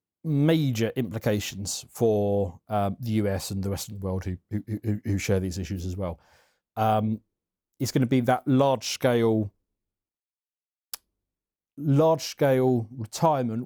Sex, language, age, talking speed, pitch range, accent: male, English, 40-59, 125 wpm, 100-120 Hz, British